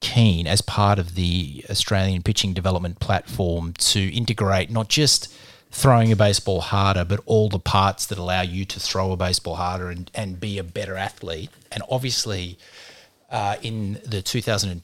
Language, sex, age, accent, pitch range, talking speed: English, male, 30-49, Australian, 90-110 Hz, 160 wpm